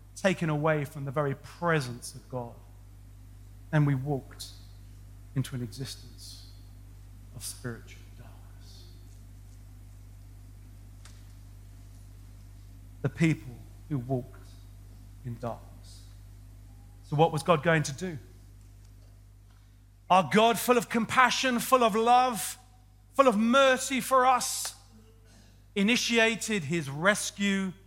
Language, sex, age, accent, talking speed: English, male, 40-59, British, 100 wpm